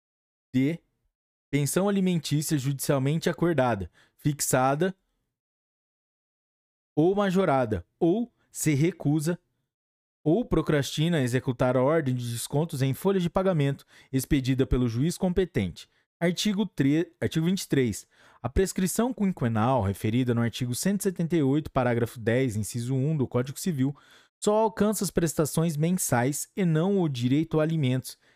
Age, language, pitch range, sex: 20-39, Portuguese, 125-175 Hz, male